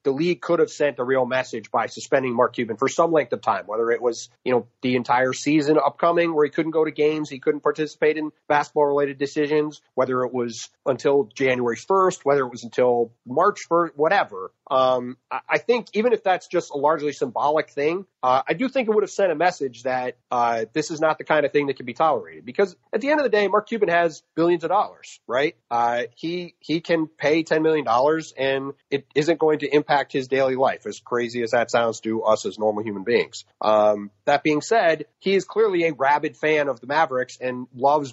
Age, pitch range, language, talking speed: 30-49, 125-160 Hz, English, 225 wpm